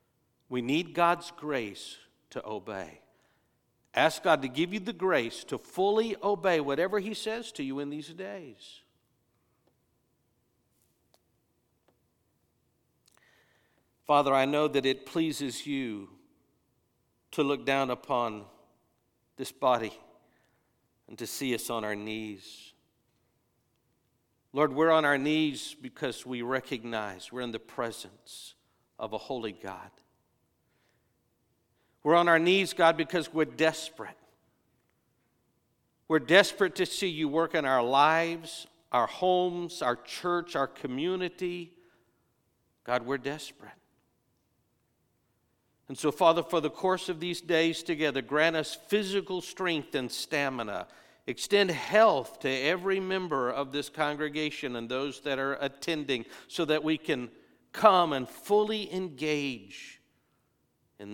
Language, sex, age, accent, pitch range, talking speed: English, male, 50-69, American, 125-170 Hz, 120 wpm